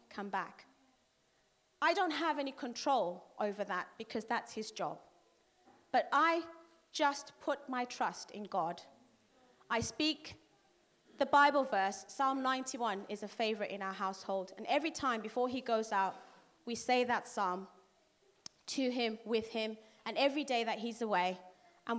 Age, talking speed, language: 30-49, 155 wpm, English